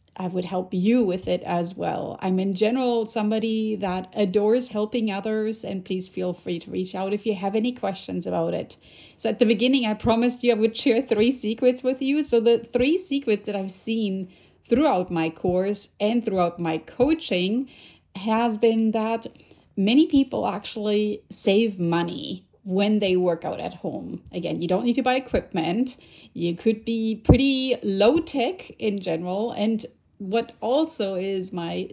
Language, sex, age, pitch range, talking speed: English, female, 30-49, 190-235 Hz, 175 wpm